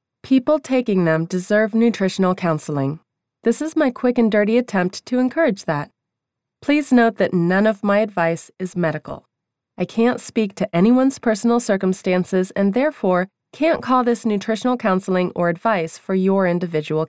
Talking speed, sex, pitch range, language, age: 155 wpm, female, 180-240 Hz, English, 30-49